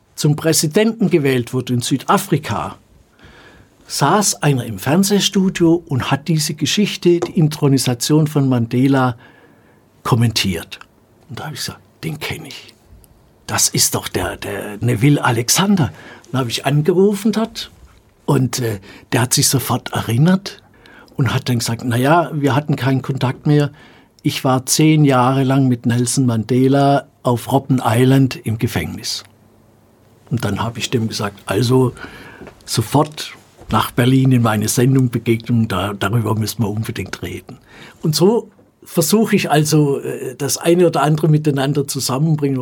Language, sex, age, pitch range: German, male, 60-79, 125-165 Hz